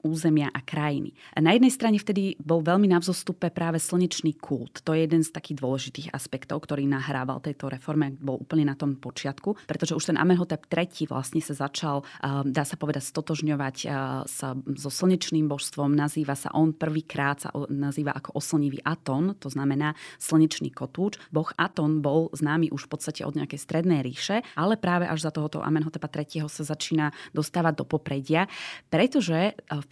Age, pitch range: 20-39, 145-170 Hz